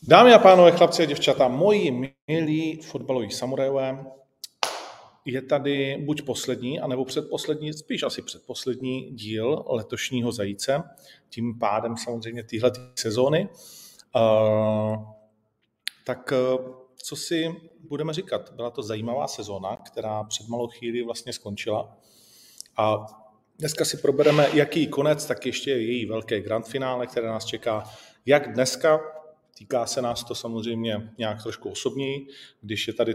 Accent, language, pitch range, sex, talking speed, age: native, Czech, 110-135 Hz, male, 125 wpm, 40-59